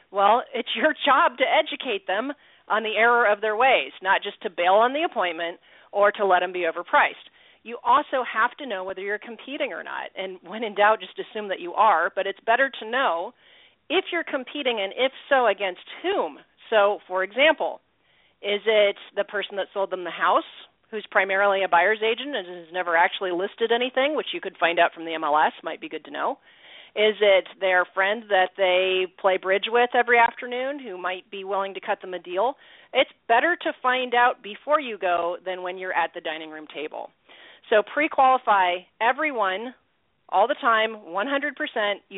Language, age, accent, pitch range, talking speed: English, 40-59, American, 185-255 Hz, 195 wpm